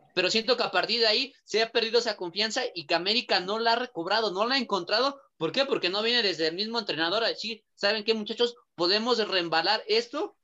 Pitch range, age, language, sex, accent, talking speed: 170-235 Hz, 30-49, Spanish, male, Mexican, 225 wpm